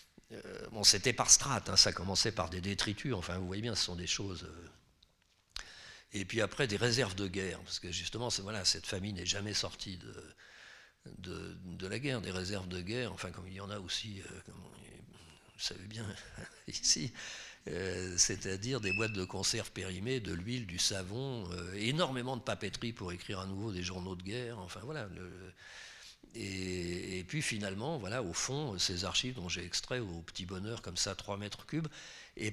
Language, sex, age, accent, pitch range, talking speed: French, male, 50-69, French, 95-125 Hz, 195 wpm